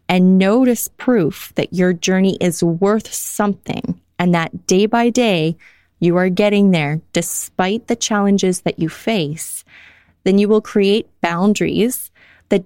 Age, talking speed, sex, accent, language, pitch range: 20-39, 140 wpm, female, American, English, 170-210 Hz